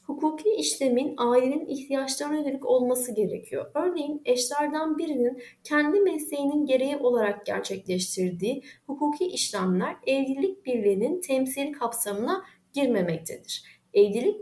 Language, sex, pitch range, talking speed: Turkish, female, 225-320 Hz, 95 wpm